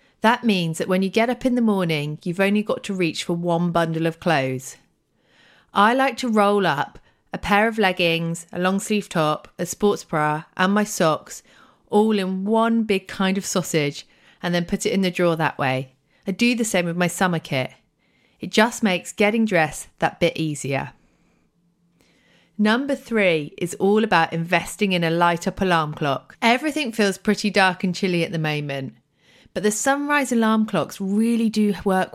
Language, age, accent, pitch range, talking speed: English, 30-49, British, 165-210 Hz, 185 wpm